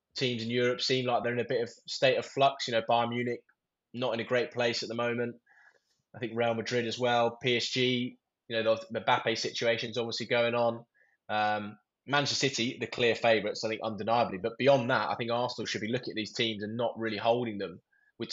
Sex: male